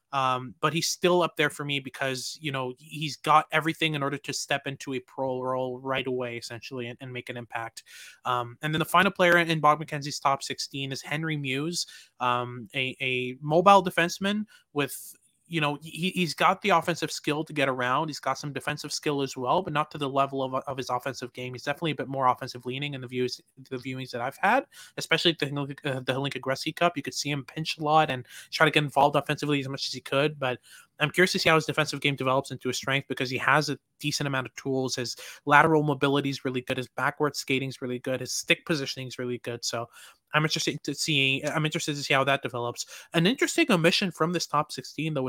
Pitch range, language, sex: 130-155 Hz, English, male